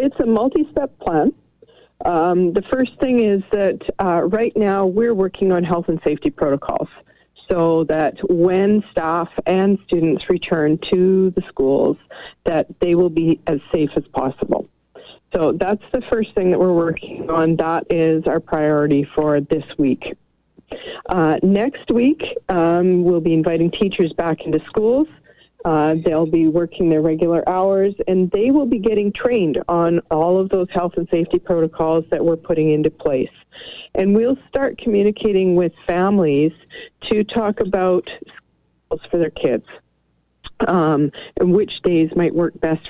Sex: female